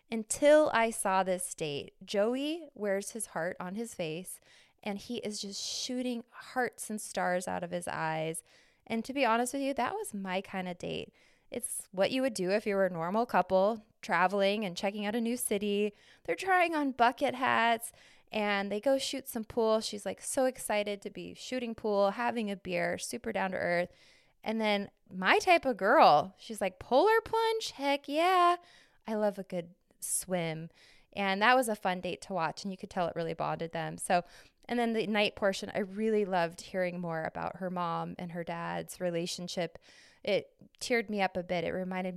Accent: American